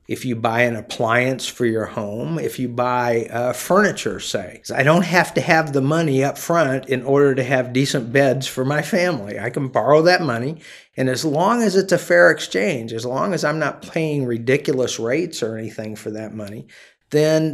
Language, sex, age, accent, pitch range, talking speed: English, male, 50-69, American, 120-150 Hz, 200 wpm